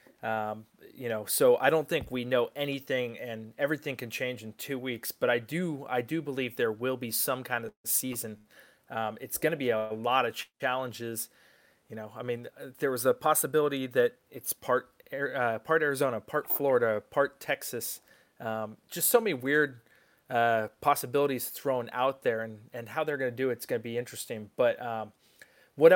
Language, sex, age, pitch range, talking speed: English, male, 30-49, 115-140 Hz, 190 wpm